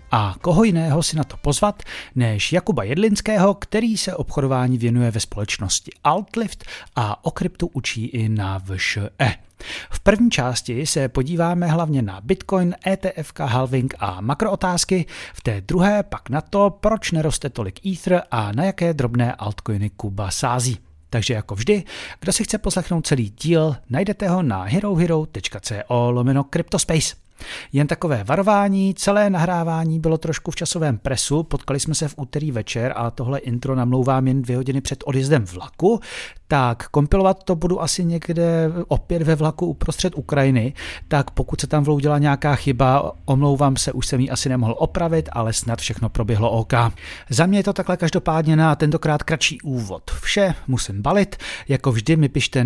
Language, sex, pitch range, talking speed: Czech, male, 120-175 Hz, 160 wpm